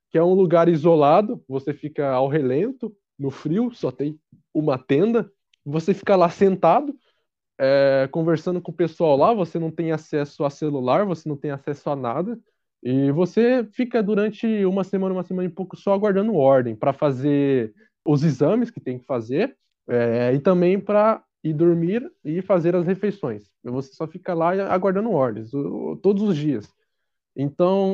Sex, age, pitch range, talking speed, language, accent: male, 20-39, 145-205 Hz, 170 wpm, Portuguese, Brazilian